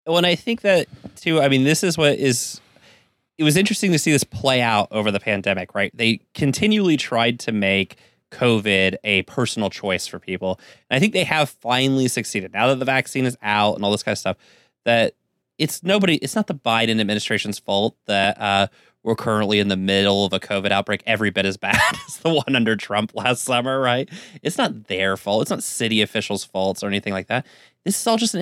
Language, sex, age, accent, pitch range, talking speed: English, male, 20-39, American, 100-145 Hz, 220 wpm